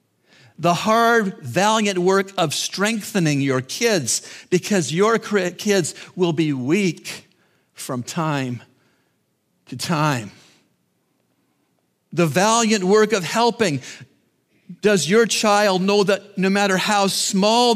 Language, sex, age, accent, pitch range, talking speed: English, male, 50-69, American, 130-205 Hz, 110 wpm